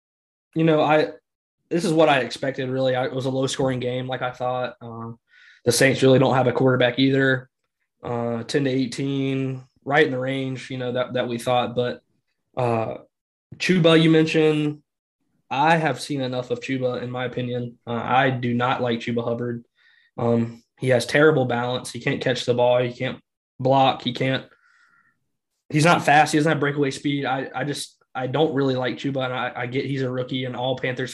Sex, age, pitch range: male, 20-39, 120-135 Hz